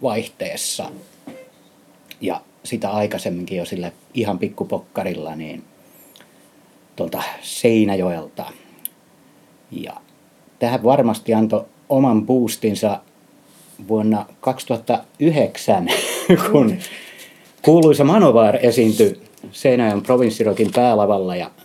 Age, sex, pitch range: 30-49, male, 100-125 Hz